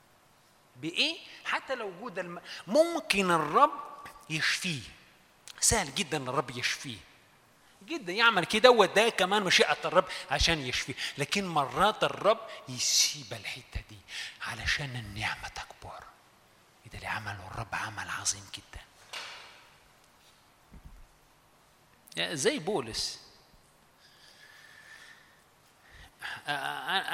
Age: 30-49